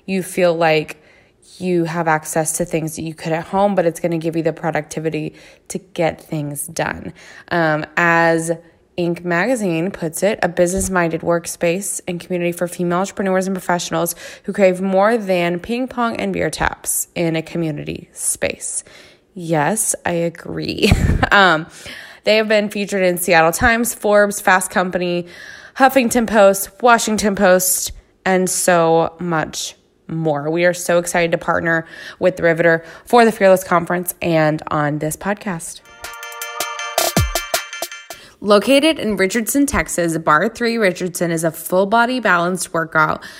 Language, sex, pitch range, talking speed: English, female, 165-200 Hz, 145 wpm